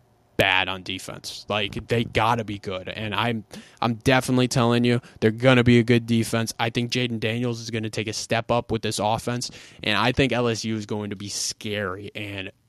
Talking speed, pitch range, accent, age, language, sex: 225 wpm, 105-125 Hz, American, 20-39, English, male